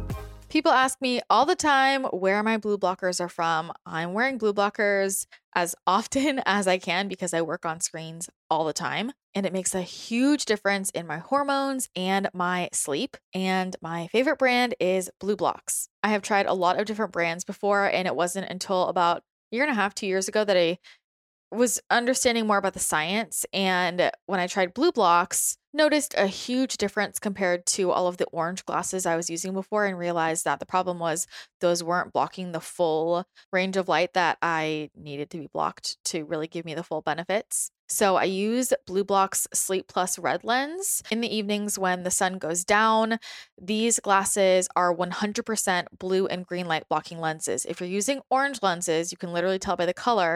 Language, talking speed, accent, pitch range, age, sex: English, 195 wpm, American, 175-215 Hz, 20-39, female